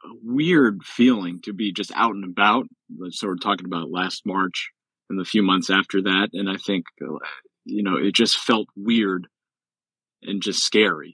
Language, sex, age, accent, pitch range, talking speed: English, male, 40-59, American, 85-105 Hz, 180 wpm